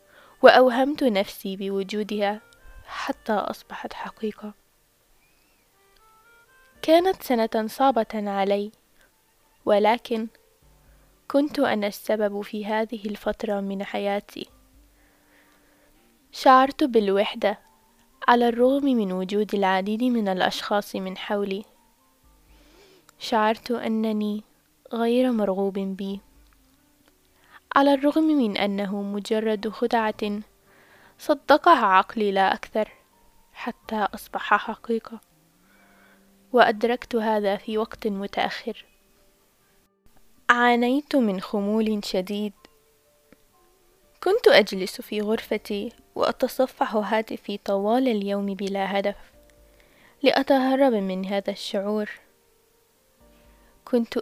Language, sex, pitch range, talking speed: Arabic, female, 200-250 Hz, 80 wpm